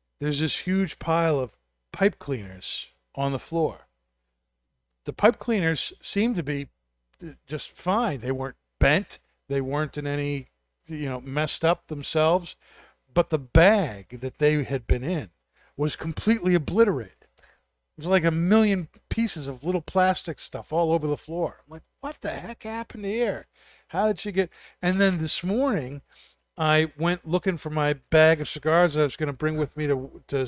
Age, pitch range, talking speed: 50-69, 130-165 Hz, 175 wpm